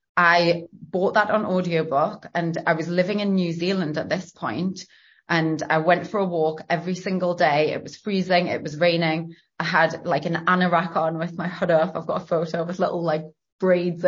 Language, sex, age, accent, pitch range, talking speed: English, female, 30-49, British, 160-200 Hz, 205 wpm